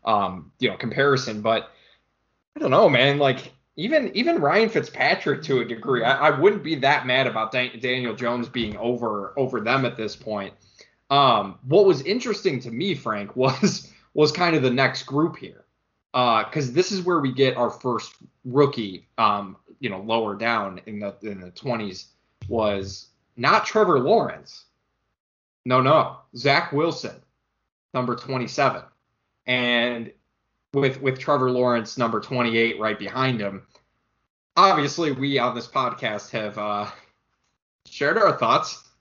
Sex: male